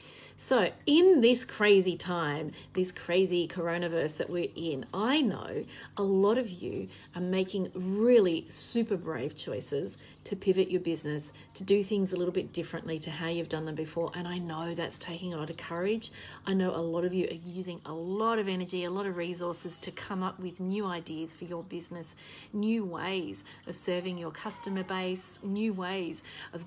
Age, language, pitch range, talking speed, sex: 30-49, English, 170-210 Hz, 190 wpm, female